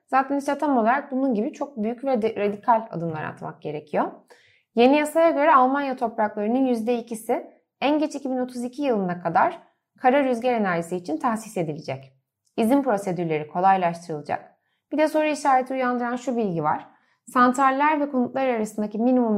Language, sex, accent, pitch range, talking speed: Turkish, female, native, 195-270 Hz, 140 wpm